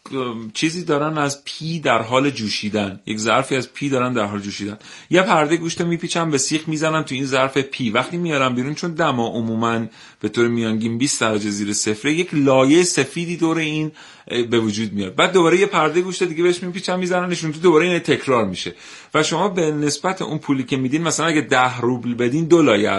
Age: 40-59